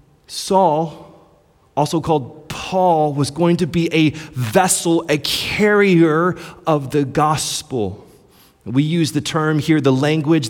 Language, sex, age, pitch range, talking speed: English, male, 30-49, 115-160 Hz, 125 wpm